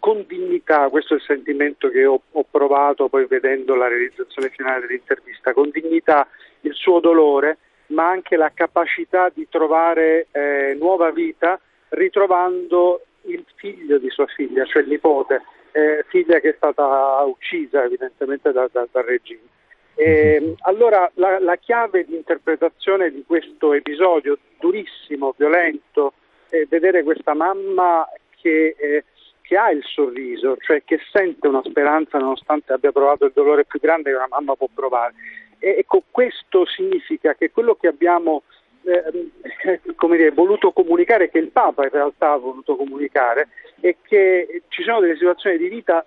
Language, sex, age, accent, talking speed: Italian, male, 50-69, native, 150 wpm